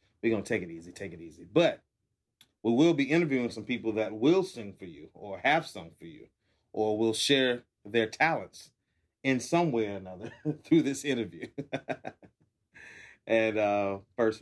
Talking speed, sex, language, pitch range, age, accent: 175 wpm, male, English, 100-125 Hz, 30-49, American